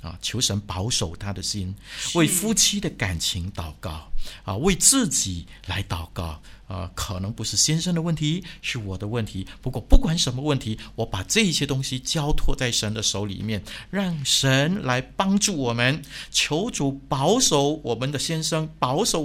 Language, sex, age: Chinese, male, 50-69